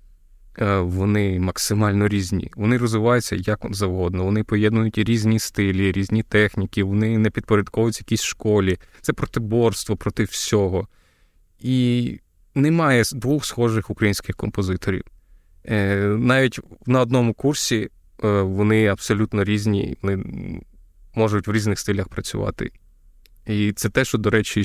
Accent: native